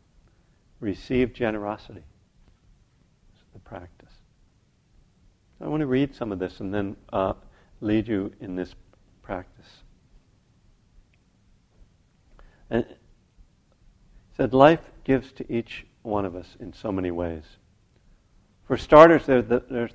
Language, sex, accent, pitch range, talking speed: English, male, American, 95-120 Hz, 115 wpm